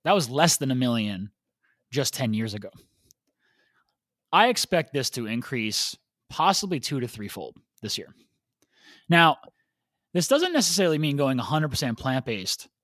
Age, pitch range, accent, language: 20-39, 120-165 Hz, American, English